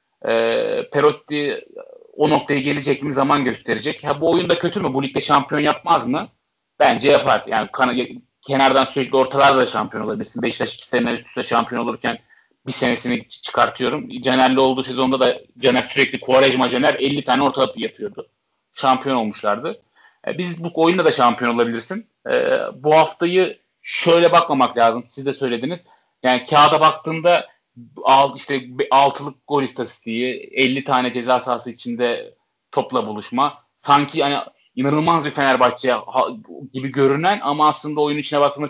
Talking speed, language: 145 wpm, Turkish